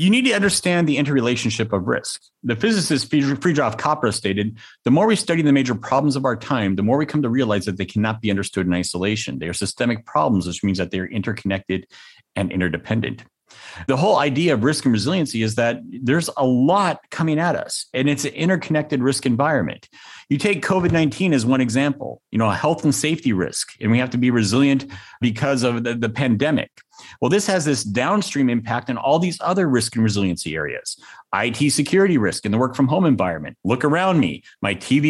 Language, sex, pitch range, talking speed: English, male, 110-165 Hz, 205 wpm